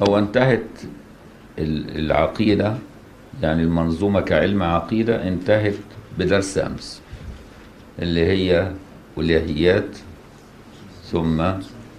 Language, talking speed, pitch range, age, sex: Arabic, 70 wpm, 80-110 Hz, 60-79, male